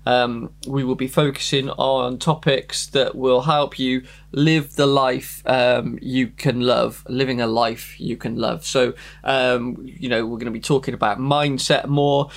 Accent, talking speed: British, 175 wpm